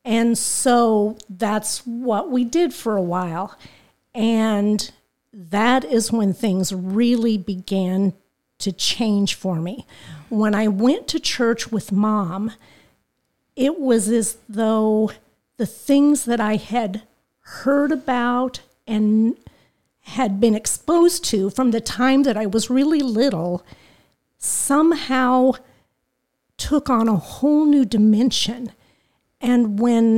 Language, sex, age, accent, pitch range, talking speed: English, female, 50-69, American, 205-255 Hz, 120 wpm